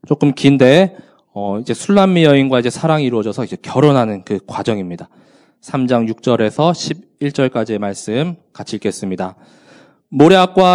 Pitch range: 115-155 Hz